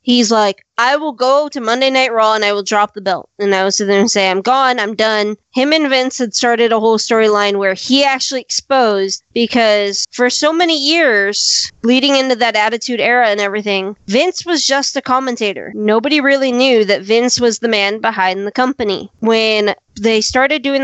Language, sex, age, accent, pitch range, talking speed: English, female, 20-39, American, 210-260 Hz, 200 wpm